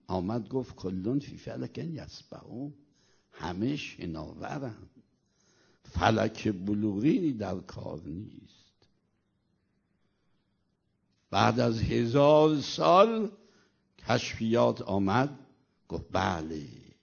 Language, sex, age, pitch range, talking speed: Persian, male, 60-79, 100-135 Hz, 80 wpm